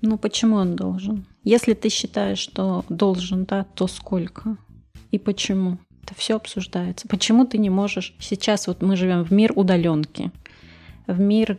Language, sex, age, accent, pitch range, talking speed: Russian, female, 30-49, native, 175-210 Hz, 155 wpm